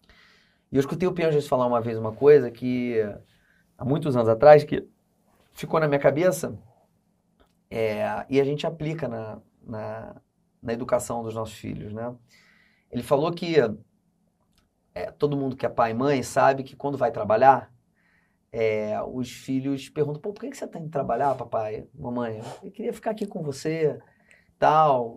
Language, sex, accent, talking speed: Portuguese, male, Brazilian, 160 wpm